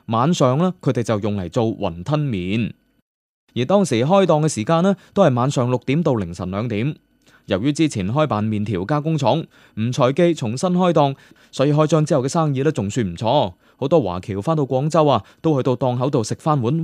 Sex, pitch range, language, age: male, 115-170 Hz, Chinese, 20-39